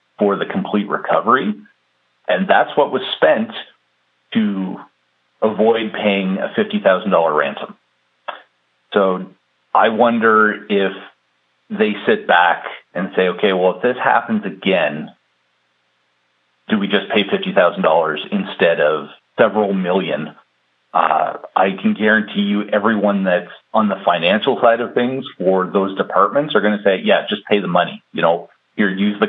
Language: English